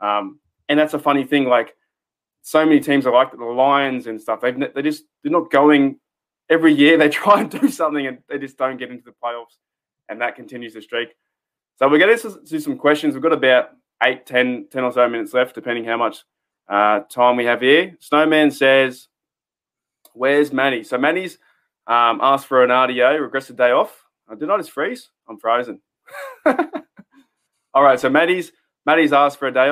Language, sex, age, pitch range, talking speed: English, male, 20-39, 120-155 Hz, 200 wpm